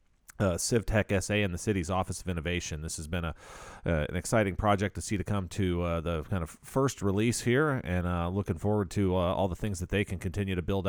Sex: male